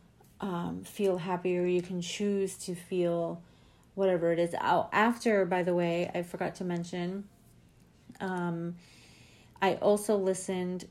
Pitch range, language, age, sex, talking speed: 175-195 Hz, English, 30-49, female, 125 wpm